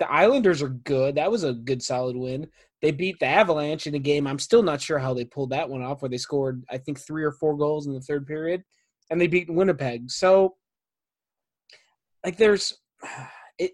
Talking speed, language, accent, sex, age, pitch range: 210 wpm, English, American, male, 20-39, 135-175 Hz